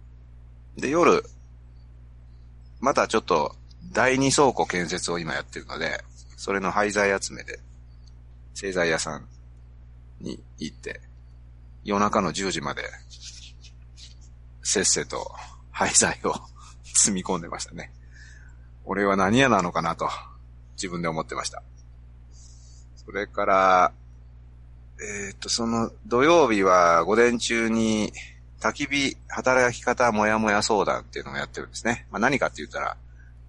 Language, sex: Japanese, male